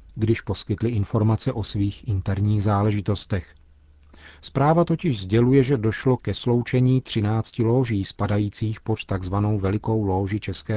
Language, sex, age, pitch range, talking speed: Czech, male, 40-59, 100-125 Hz, 125 wpm